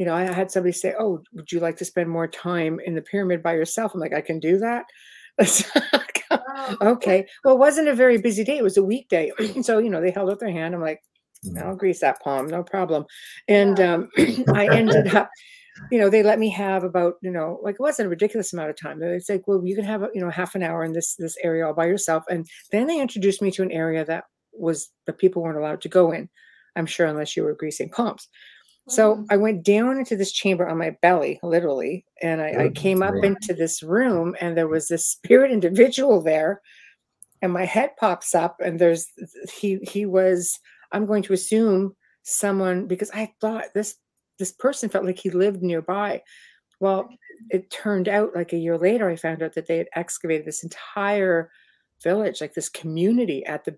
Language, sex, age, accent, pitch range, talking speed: English, female, 60-79, American, 170-215 Hz, 215 wpm